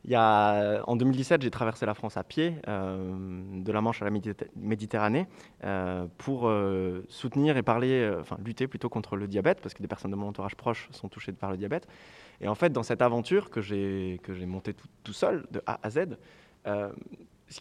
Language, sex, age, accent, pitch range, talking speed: French, male, 20-39, French, 105-155 Hz, 220 wpm